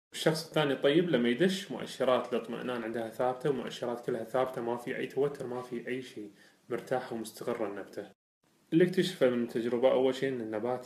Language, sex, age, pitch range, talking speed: Arabic, male, 20-39, 115-150 Hz, 170 wpm